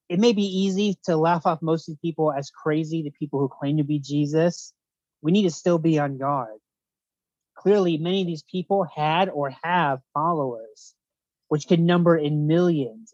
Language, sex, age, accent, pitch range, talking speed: English, male, 30-49, American, 140-170 Hz, 185 wpm